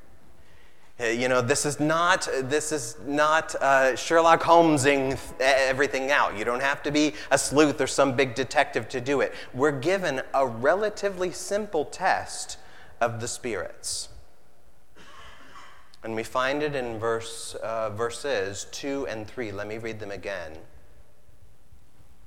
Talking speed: 140 wpm